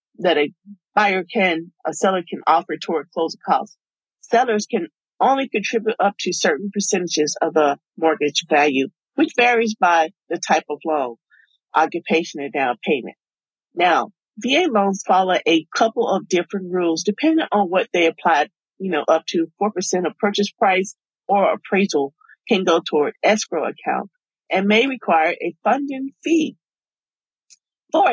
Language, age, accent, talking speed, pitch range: English, 40-59, American, 150 wpm, 160-210 Hz